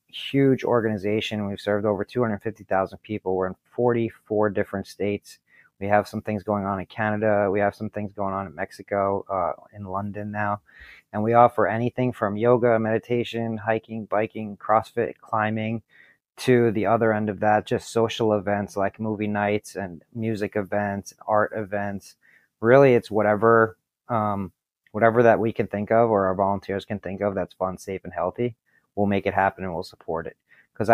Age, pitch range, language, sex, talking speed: 30-49, 100-115 Hz, English, male, 180 wpm